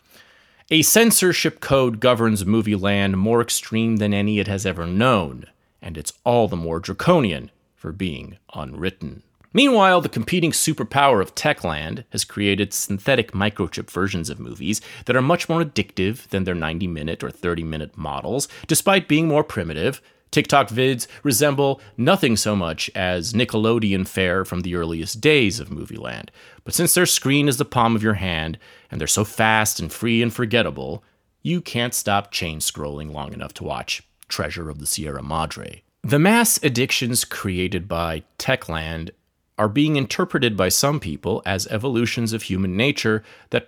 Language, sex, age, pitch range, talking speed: English, male, 30-49, 90-135 Hz, 160 wpm